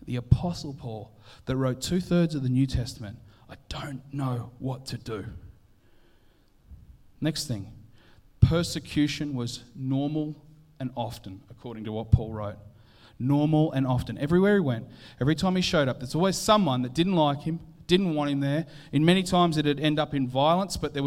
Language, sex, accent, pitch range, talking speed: English, male, Australian, 120-160 Hz, 175 wpm